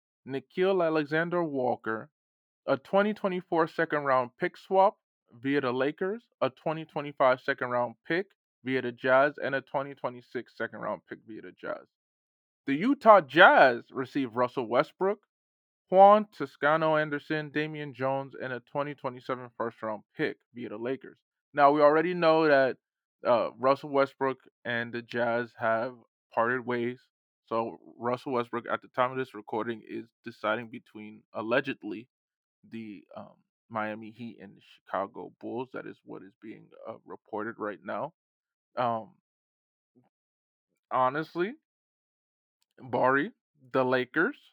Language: English